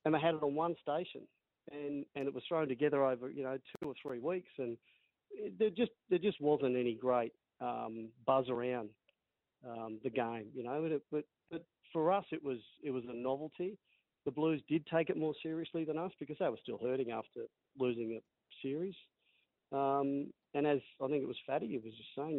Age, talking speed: 40-59, 210 wpm